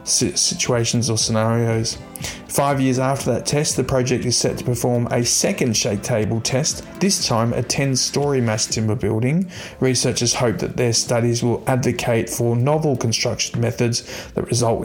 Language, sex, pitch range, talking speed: English, male, 115-130 Hz, 160 wpm